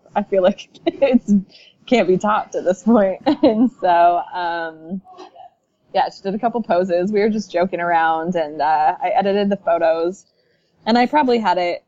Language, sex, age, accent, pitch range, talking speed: English, female, 20-39, American, 170-225 Hz, 180 wpm